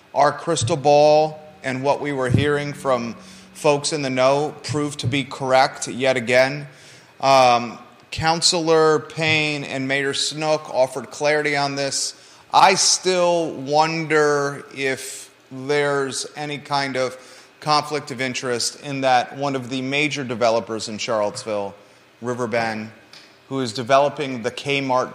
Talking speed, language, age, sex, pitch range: 135 wpm, English, 30-49, male, 120-145 Hz